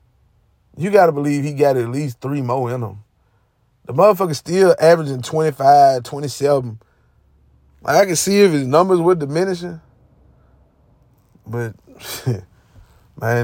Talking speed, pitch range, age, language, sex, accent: 130 wpm, 115-160 Hz, 20-39, English, male, American